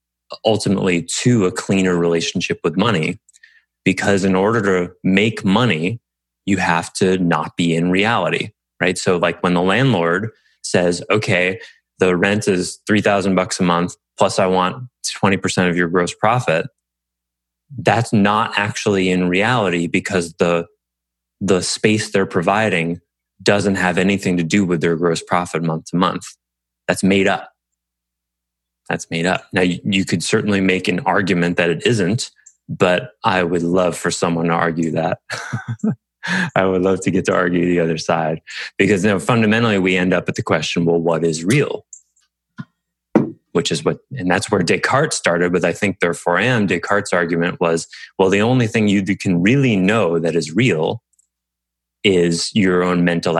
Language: English